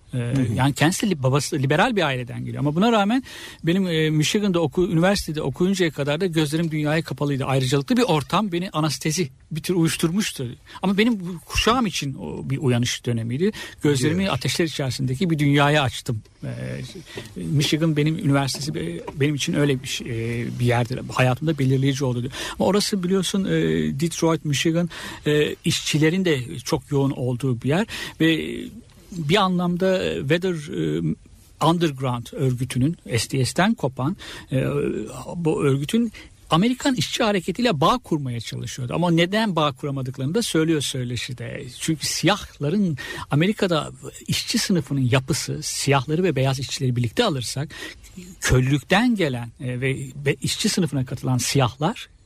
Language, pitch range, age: Turkish, 130-175 Hz, 60-79